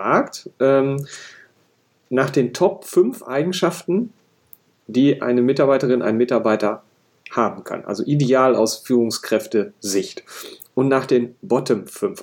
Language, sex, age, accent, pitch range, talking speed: German, male, 40-59, German, 115-155 Hz, 115 wpm